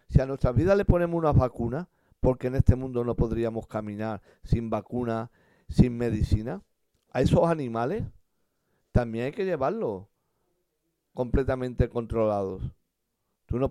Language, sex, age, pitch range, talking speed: Spanish, male, 50-69, 105-145 Hz, 130 wpm